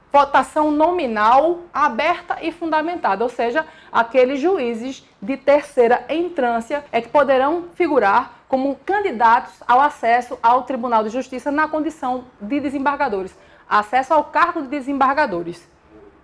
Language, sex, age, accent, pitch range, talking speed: Portuguese, female, 20-39, Brazilian, 250-315 Hz, 120 wpm